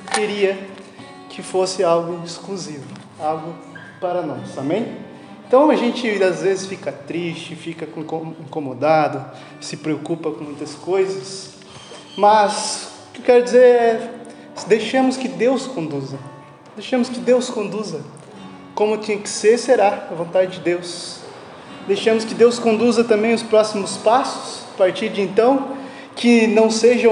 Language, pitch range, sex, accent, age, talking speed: Portuguese, 175-225 Hz, male, Brazilian, 20-39, 135 wpm